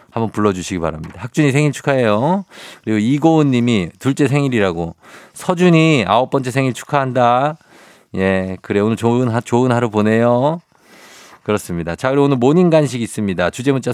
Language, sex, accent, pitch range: Korean, male, native, 110-150 Hz